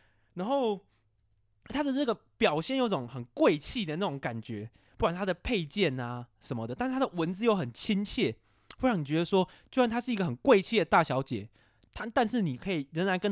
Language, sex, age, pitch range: Chinese, male, 20-39, 135-220 Hz